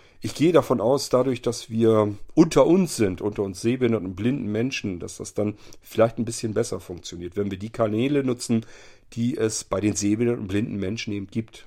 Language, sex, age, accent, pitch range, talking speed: German, male, 40-59, German, 95-120 Hz, 200 wpm